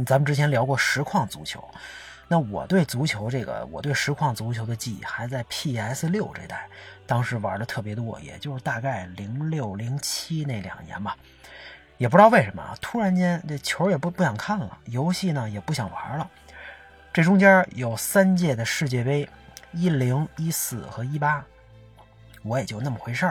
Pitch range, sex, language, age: 110-145 Hz, male, Chinese, 30-49